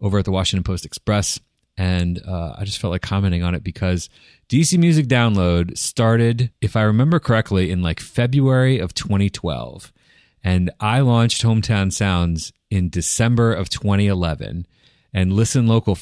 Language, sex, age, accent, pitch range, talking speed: English, male, 30-49, American, 90-115 Hz, 155 wpm